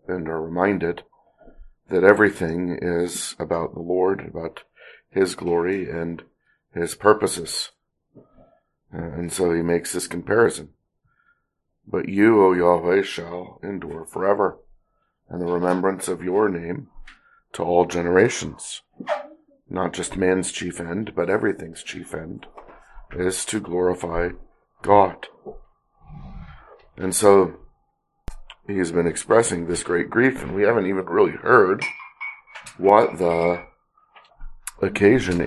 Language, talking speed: English, 115 wpm